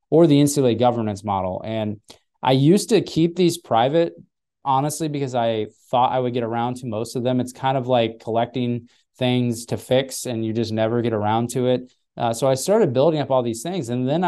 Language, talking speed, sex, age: English, 215 wpm, male, 20-39